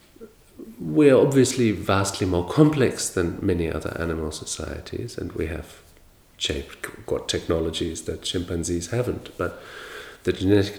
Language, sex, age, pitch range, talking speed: English, male, 40-59, 85-105 Hz, 115 wpm